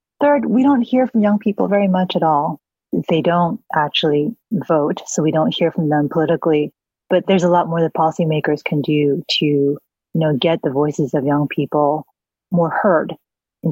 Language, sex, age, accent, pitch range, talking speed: English, female, 30-49, American, 155-185 Hz, 190 wpm